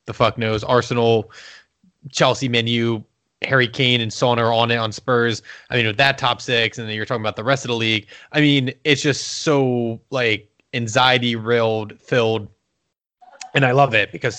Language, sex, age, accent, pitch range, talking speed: English, male, 20-39, American, 115-140 Hz, 185 wpm